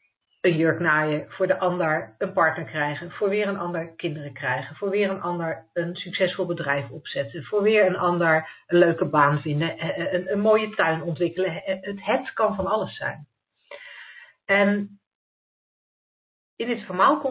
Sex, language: female, Dutch